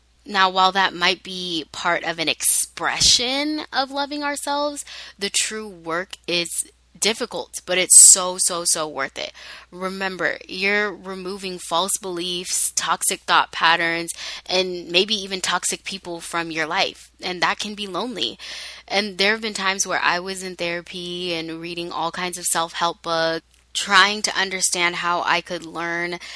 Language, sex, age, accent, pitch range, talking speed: English, female, 10-29, American, 170-195 Hz, 155 wpm